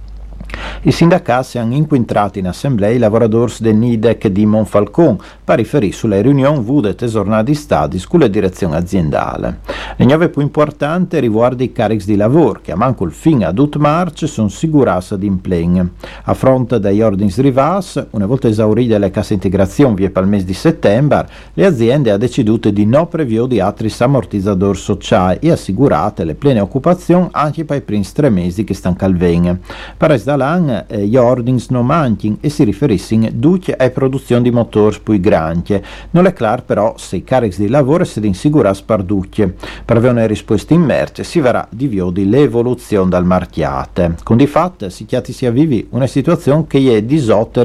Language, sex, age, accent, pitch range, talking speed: Italian, male, 50-69, native, 100-140 Hz, 175 wpm